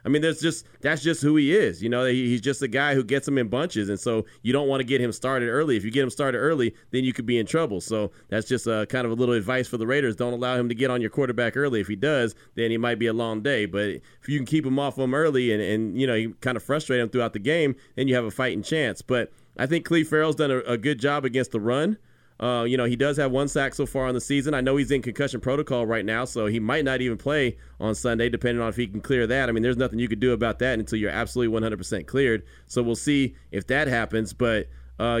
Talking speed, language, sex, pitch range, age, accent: 295 wpm, English, male, 115-140 Hz, 30-49, American